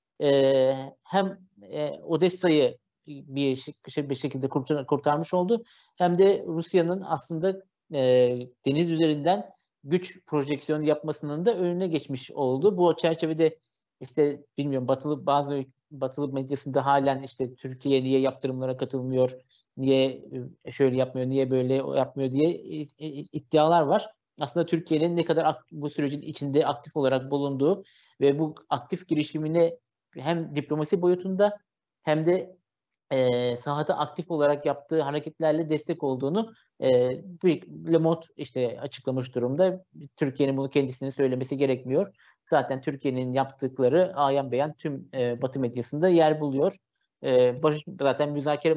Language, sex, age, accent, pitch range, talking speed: Turkish, male, 50-69, native, 135-160 Hz, 120 wpm